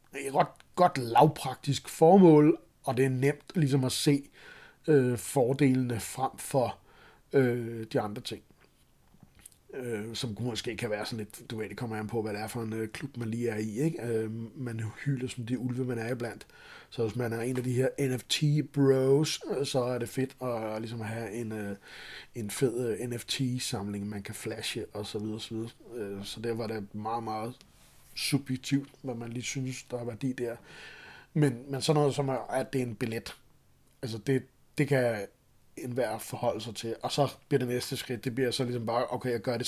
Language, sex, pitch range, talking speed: Danish, male, 115-135 Hz, 205 wpm